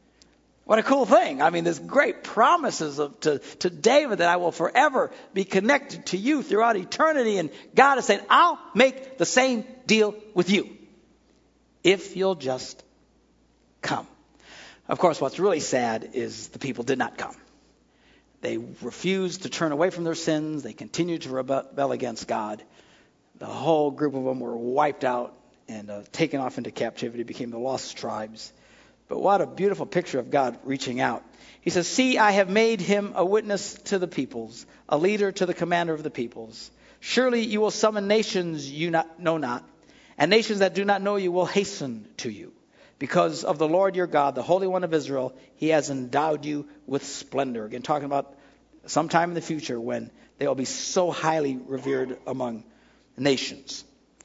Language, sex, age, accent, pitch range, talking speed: English, male, 60-79, American, 135-205 Hz, 180 wpm